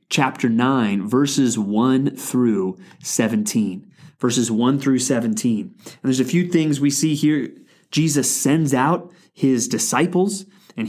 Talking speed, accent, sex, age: 130 wpm, American, male, 30-49